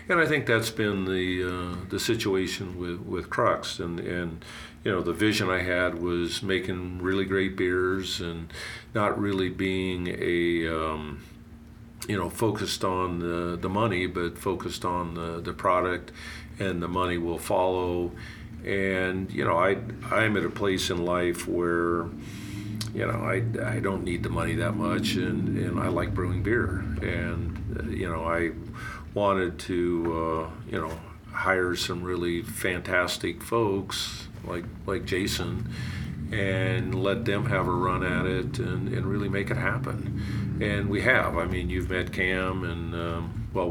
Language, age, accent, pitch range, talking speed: English, 50-69, American, 85-105 Hz, 165 wpm